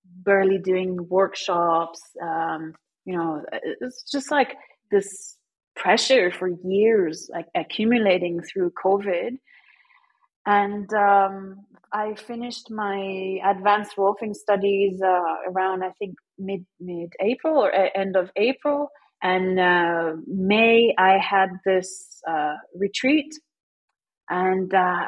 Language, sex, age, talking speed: English, female, 30-49, 110 wpm